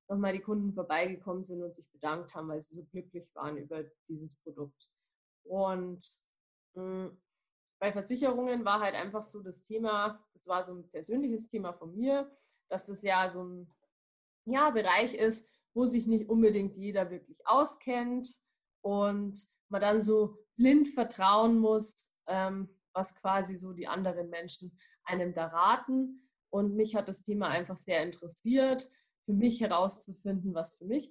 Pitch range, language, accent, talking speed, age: 185-230 Hz, German, German, 160 wpm, 20-39